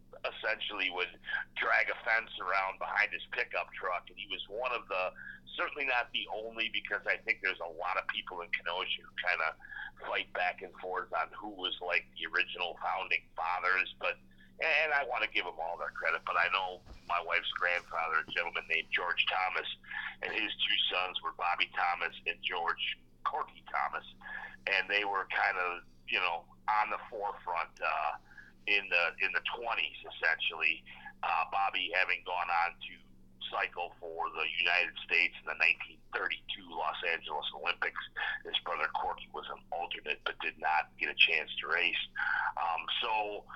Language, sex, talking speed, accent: English, male, 175 wpm, American